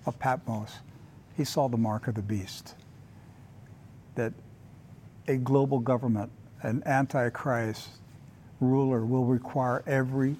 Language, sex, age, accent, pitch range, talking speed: English, male, 60-79, American, 120-175 Hz, 110 wpm